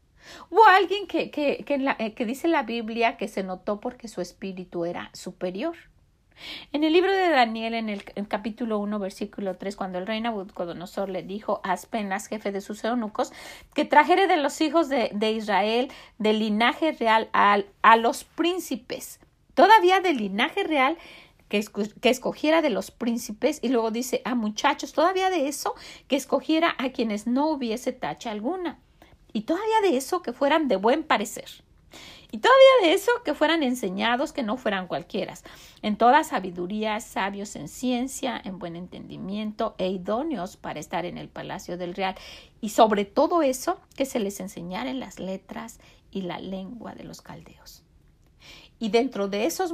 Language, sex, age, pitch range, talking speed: Spanish, female, 40-59, 200-290 Hz, 175 wpm